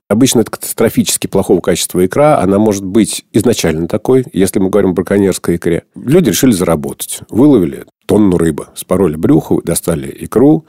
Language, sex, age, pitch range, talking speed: Russian, male, 50-69, 85-110 Hz, 150 wpm